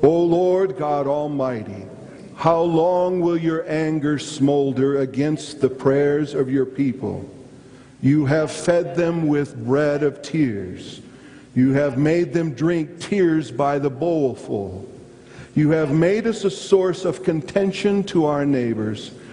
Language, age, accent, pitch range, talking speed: English, 50-69, American, 130-165 Hz, 135 wpm